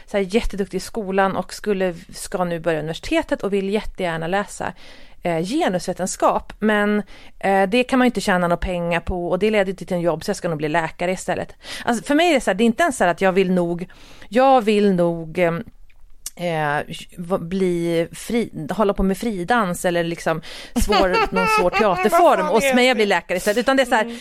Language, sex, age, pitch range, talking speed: Swedish, female, 40-59, 185-255 Hz, 215 wpm